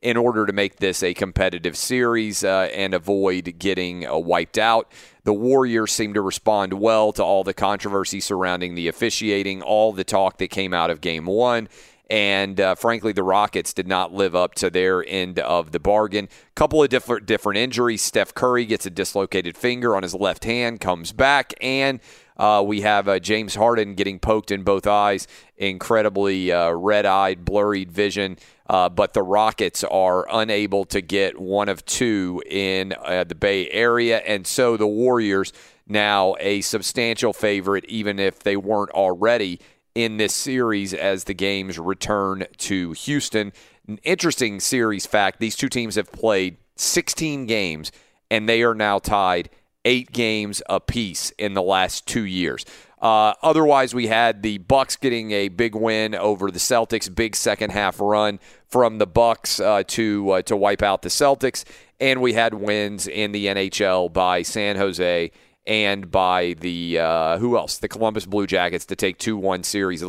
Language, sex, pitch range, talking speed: English, male, 95-115 Hz, 170 wpm